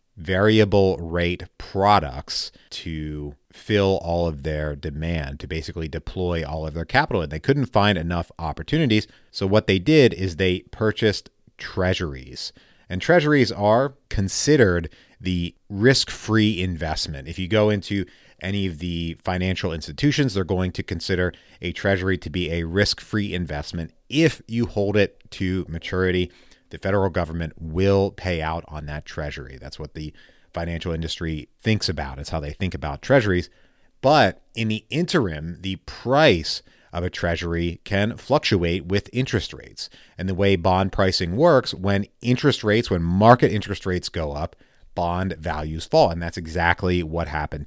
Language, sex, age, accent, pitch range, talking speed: English, male, 30-49, American, 80-105 Hz, 155 wpm